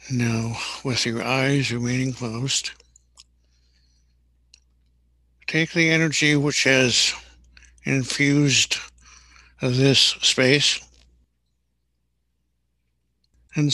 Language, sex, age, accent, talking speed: English, male, 60-79, American, 65 wpm